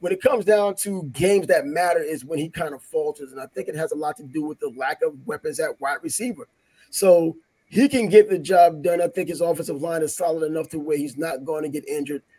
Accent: American